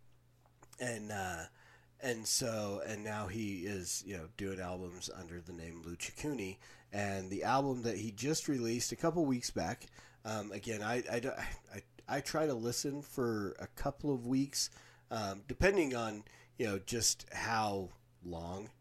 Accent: American